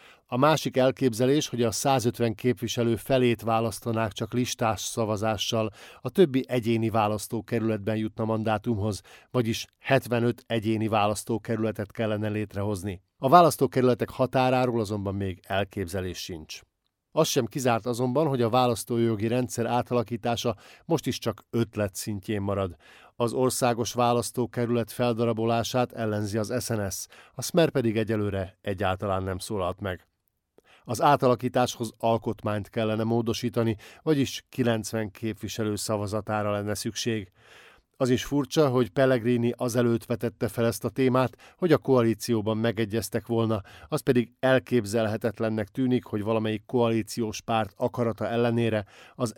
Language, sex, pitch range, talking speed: Hungarian, male, 105-125 Hz, 120 wpm